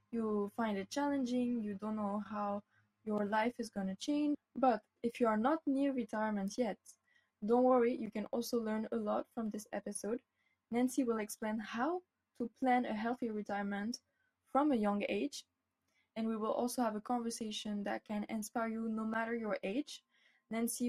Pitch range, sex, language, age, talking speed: 205-245 Hz, female, English, 10-29, 180 wpm